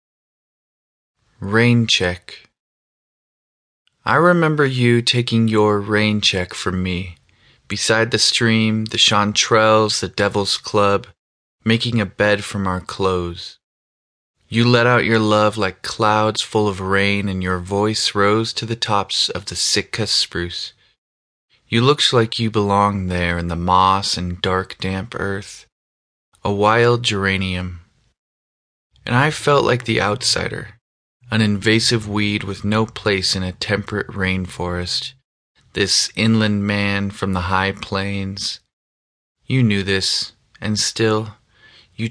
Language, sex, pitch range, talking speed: English, male, 95-110 Hz, 130 wpm